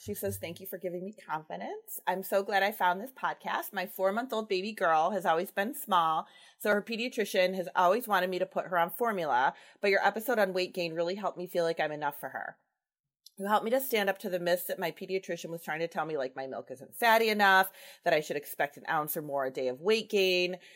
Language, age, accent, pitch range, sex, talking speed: English, 30-49, American, 160-200 Hz, female, 250 wpm